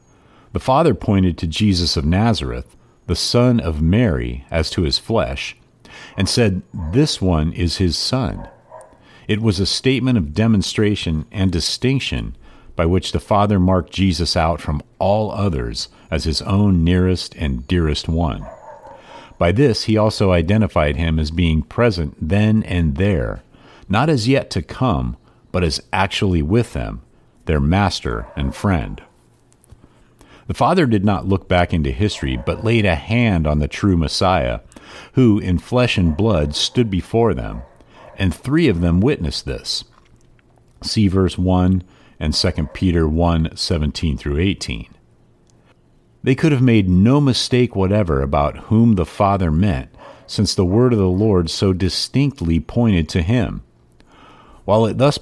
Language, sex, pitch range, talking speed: English, male, 80-110 Hz, 150 wpm